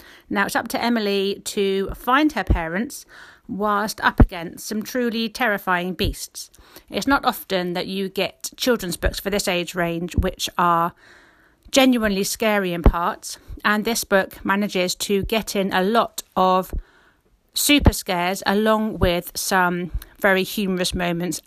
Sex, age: female, 40-59